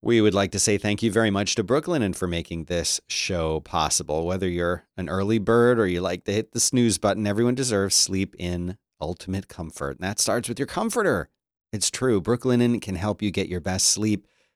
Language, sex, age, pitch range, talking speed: English, male, 40-59, 95-120 Hz, 210 wpm